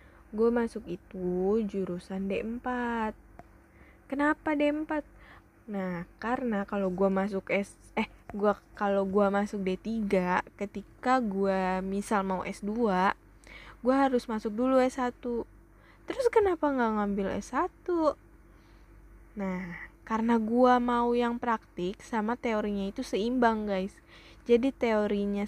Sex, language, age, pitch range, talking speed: female, Indonesian, 10-29, 195-235 Hz, 115 wpm